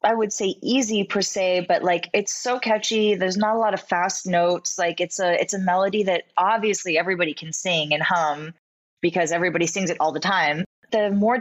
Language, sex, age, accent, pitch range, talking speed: English, female, 20-39, American, 175-230 Hz, 210 wpm